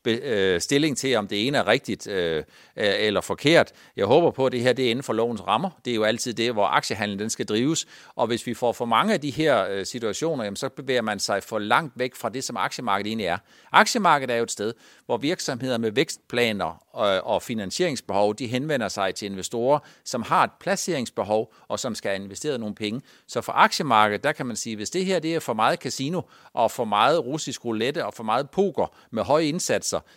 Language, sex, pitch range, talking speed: Danish, male, 110-140 Hz, 225 wpm